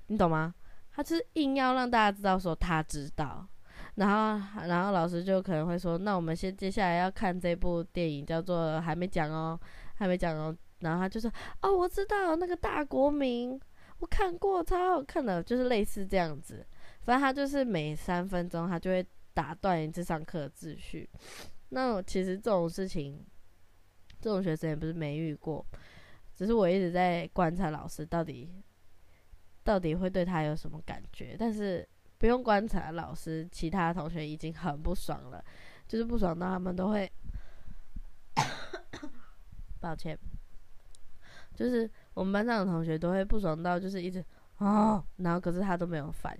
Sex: female